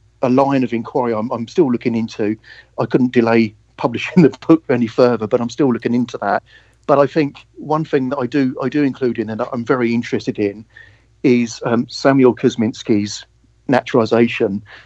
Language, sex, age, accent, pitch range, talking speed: English, male, 50-69, British, 110-125 Hz, 180 wpm